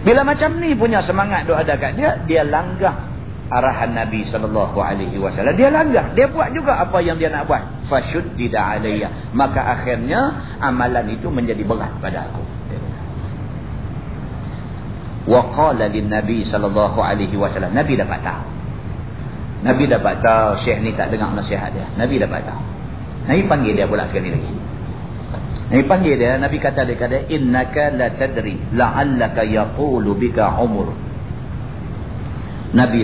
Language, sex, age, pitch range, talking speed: Malay, male, 50-69, 105-130 Hz, 120 wpm